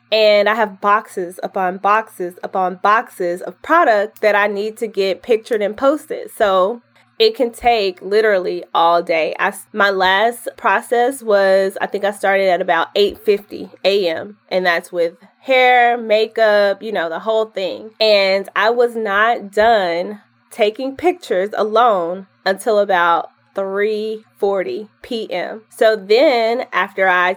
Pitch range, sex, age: 185-220 Hz, female, 20-39